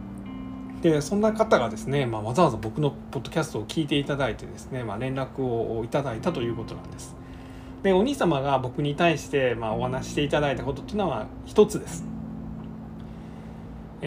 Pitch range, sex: 115-165 Hz, male